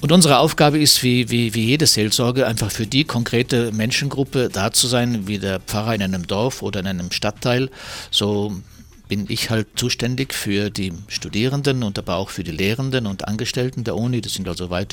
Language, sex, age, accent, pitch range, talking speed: German, male, 60-79, German, 105-130 Hz, 195 wpm